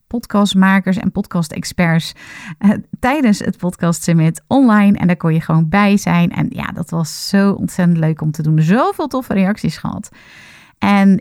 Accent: Dutch